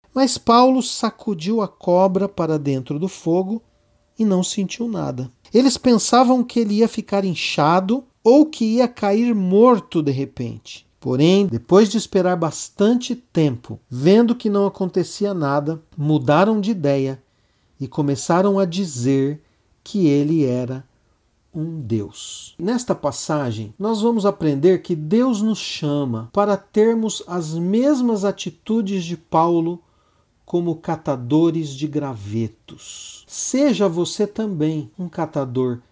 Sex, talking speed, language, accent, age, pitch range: male, 125 wpm, Portuguese, Brazilian, 50-69, 135-215 Hz